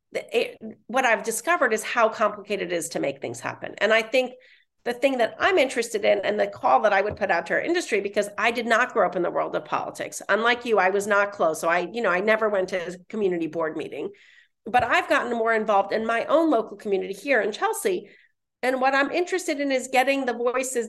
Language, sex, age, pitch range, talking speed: English, female, 40-59, 205-275 Hz, 240 wpm